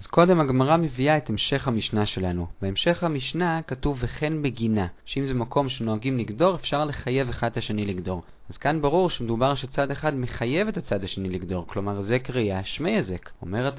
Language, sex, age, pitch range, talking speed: Hebrew, male, 30-49, 115-170 Hz, 180 wpm